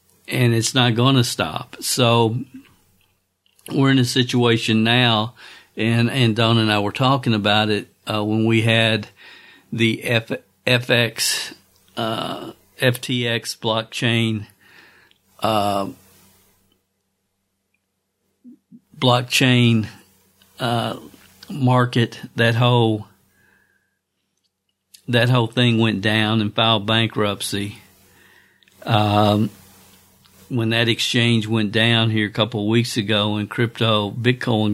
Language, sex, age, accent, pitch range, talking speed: English, male, 50-69, American, 105-115 Hz, 105 wpm